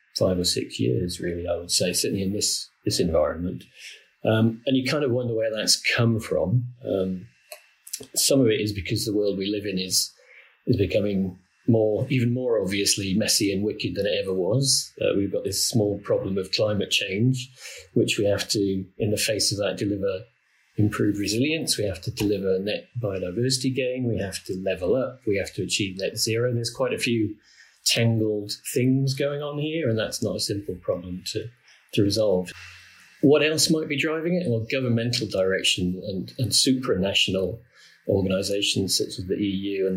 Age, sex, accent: 40-59, male, British